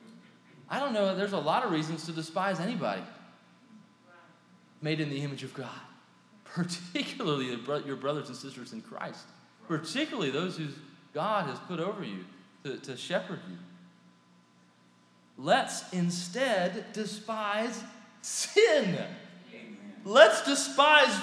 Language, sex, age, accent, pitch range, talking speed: English, male, 30-49, American, 170-255 Hz, 120 wpm